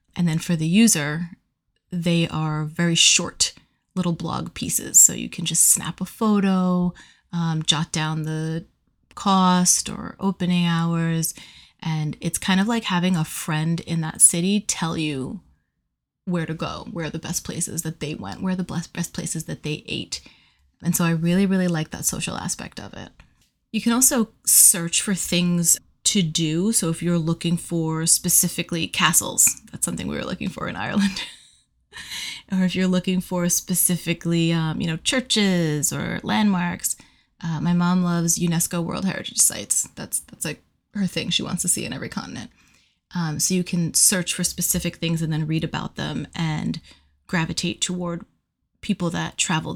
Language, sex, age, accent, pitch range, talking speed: English, female, 30-49, American, 165-185 Hz, 175 wpm